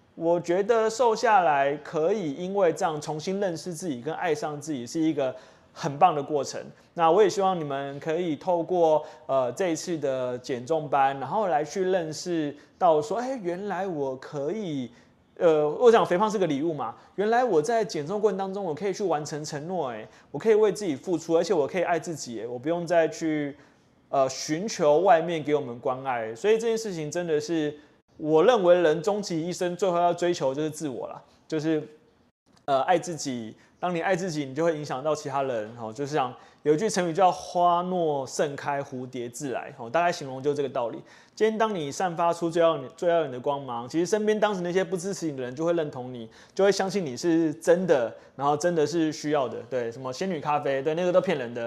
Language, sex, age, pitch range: Chinese, male, 20-39, 145-180 Hz